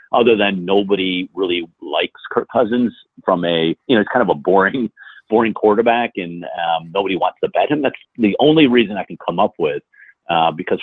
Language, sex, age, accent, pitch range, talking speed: English, male, 50-69, American, 85-120 Hz, 200 wpm